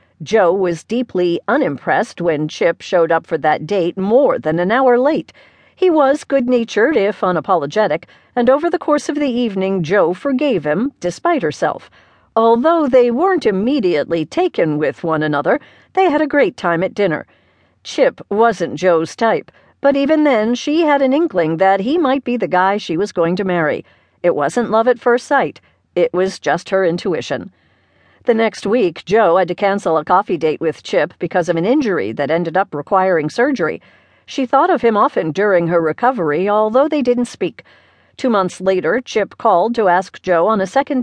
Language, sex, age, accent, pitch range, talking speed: English, female, 50-69, American, 170-255 Hz, 185 wpm